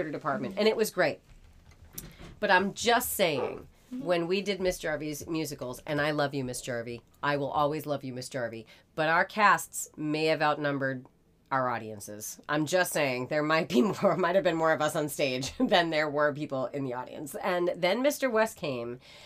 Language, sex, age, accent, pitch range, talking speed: English, female, 30-49, American, 135-165 Hz, 195 wpm